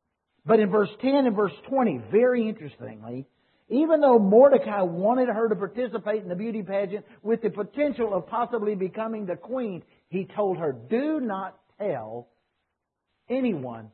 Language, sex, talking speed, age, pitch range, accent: English, male, 150 wpm, 50-69, 170-245 Hz, American